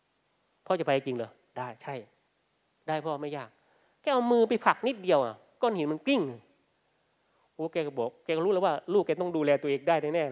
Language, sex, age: Thai, male, 30-49